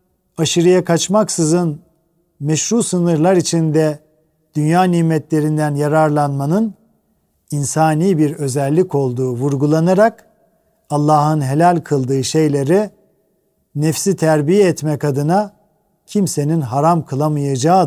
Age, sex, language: 50-69, male, Turkish